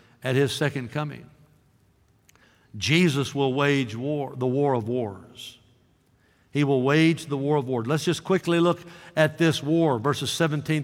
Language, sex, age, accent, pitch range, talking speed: English, male, 60-79, American, 130-170 Hz, 155 wpm